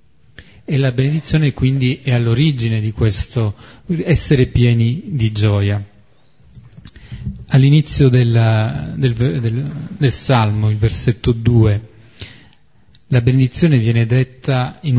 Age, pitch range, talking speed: 30-49, 115-140 Hz, 105 wpm